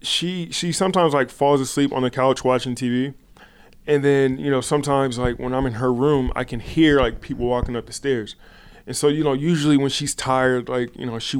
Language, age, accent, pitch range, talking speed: English, 20-39, American, 115-135 Hz, 225 wpm